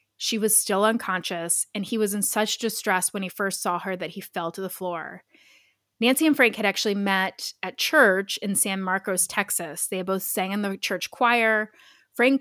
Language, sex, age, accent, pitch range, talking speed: English, female, 20-39, American, 185-220 Hz, 205 wpm